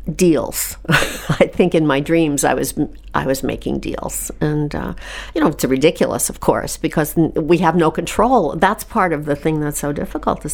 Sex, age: female, 60-79